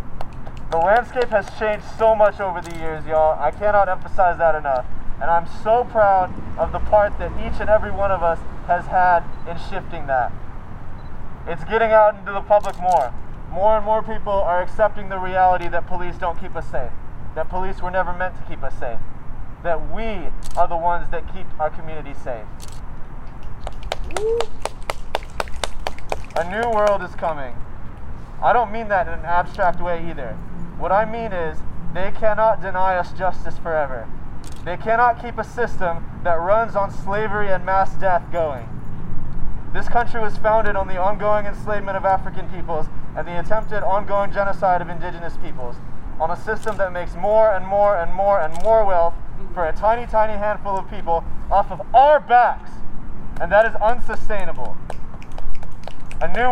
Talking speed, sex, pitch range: 170 wpm, male, 170-215 Hz